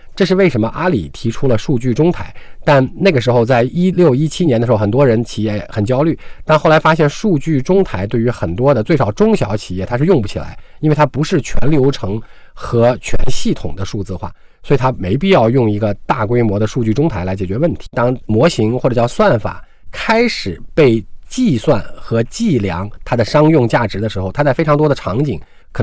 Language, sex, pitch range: Chinese, male, 105-150 Hz